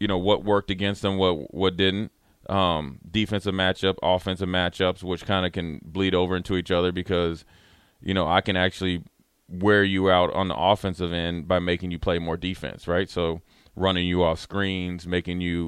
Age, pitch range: 20-39, 85-100 Hz